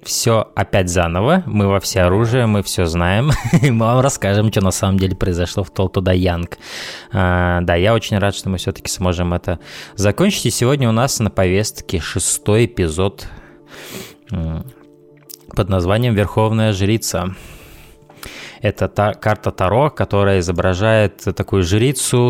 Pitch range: 90-110 Hz